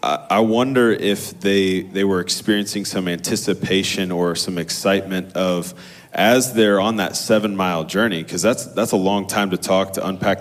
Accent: American